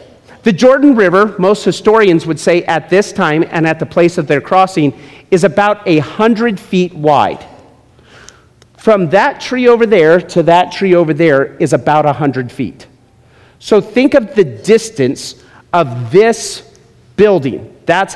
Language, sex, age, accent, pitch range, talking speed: English, male, 40-59, American, 170-225 Hz, 150 wpm